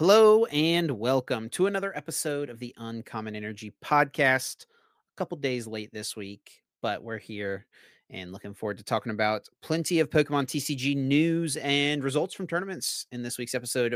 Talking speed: 170 wpm